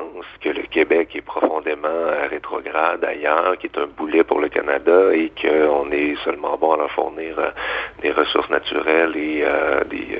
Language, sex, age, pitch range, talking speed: French, male, 50-69, 335-435 Hz, 175 wpm